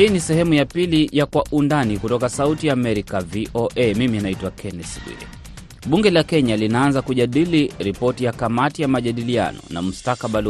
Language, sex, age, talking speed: Swahili, male, 30-49, 165 wpm